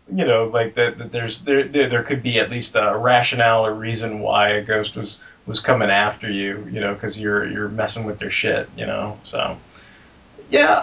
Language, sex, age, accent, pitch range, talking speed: English, male, 30-49, American, 95-120 Hz, 210 wpm